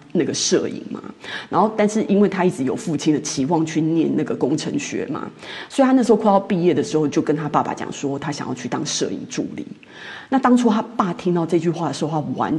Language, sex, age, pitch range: Chinese, female, 30-49, 160-250 Hz